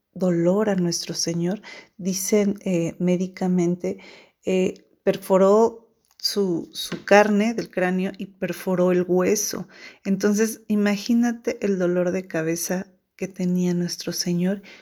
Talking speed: 115 wpm